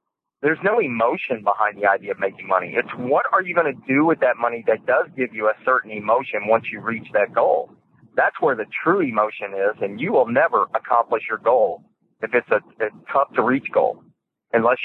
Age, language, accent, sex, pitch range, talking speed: 40-59, English, American, male, 125-165 Hz, 205 wpm